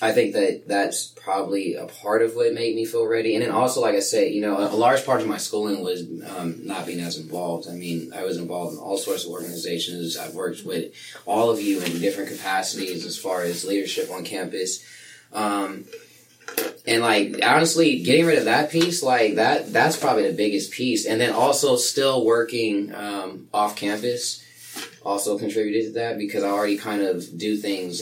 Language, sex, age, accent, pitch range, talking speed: English, male, 20-39, American, 95-115 Hz, 200 wpm